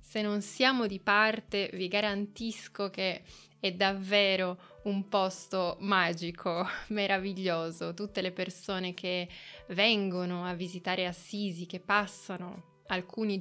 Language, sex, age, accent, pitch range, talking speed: Italian, female, 20-39, native, 185-215 Hz, 110 wpm